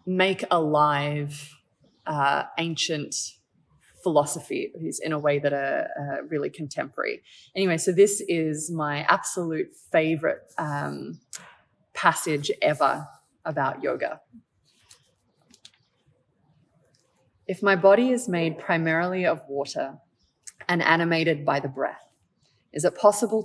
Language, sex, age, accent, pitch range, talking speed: English, female, 20-39, Australian, 150-185 Hz, 105 wpm